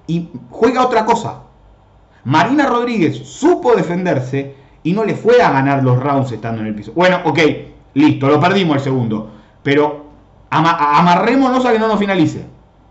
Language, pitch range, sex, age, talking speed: Spanish, 125-175 Hz, male, 30-49, 165 wpm